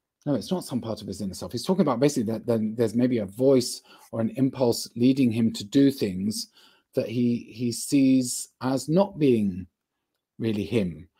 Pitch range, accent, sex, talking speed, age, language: 105-130 Hz, British, male, 195 wpm, 30-49, English